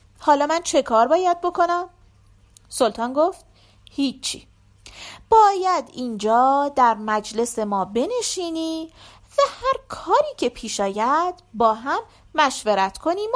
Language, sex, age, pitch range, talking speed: Persian, female, 40-59, 205-330 Hz, 110 wpm